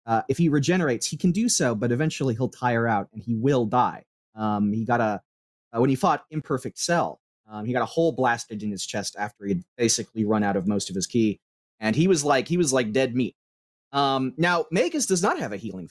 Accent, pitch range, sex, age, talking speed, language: American, 115-160 Hz, male, 30-49, 240 wpm, English